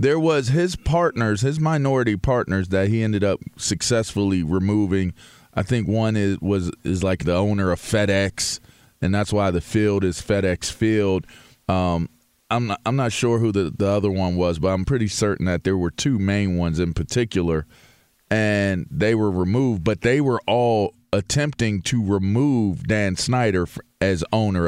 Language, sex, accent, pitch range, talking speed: English, male, American, 95-120 Hz, 175 wpm